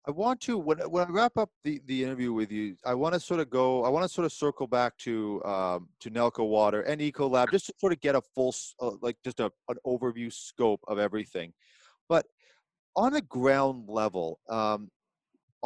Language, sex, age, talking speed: English, male, 30-49, 205 wpm